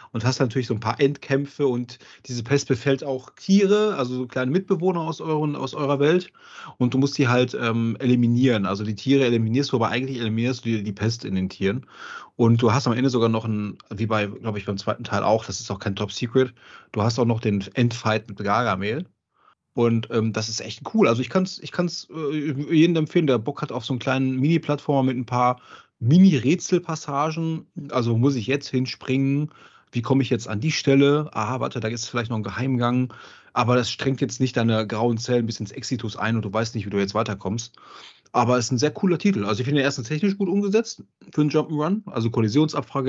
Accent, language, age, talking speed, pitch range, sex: German, German, 30-49, 220 wpm, 115-145 Hz, male